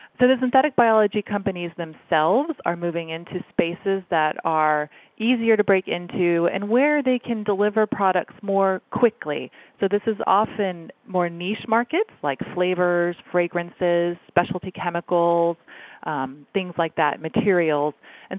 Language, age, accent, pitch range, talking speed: English, 30-49, American, 160-210 Hz, 135 wpm